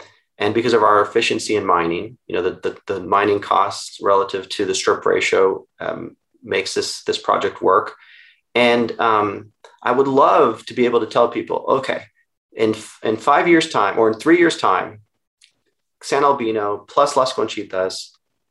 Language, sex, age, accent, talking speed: English, male, 30-49, American, 170 wpm